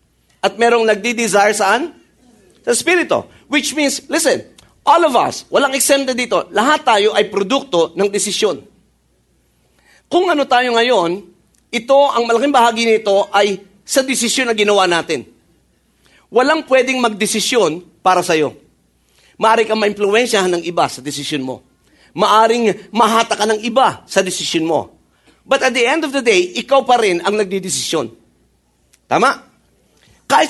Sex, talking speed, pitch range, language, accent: male, 140 wpm, 195-270 Hz, English, Filipino